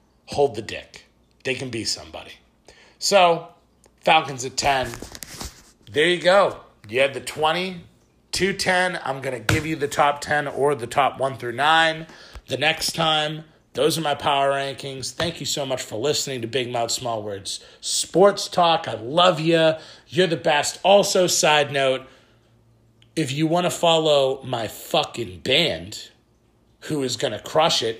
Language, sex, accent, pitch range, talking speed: English, male, American, 115-155 Hz, 165 wpm